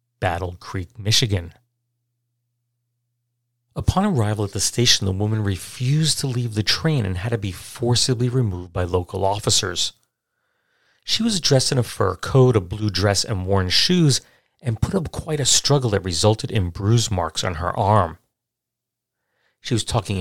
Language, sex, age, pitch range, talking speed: English, male, 40-59, 95-125 Hz, 160 wpm